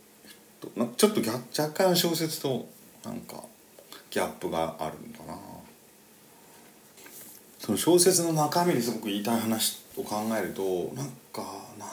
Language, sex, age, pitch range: Japanese, male, 40-59, 100-130 Hz